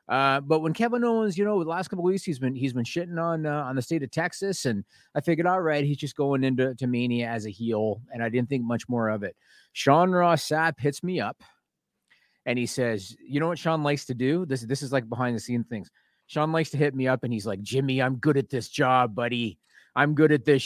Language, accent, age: English, American, 30-49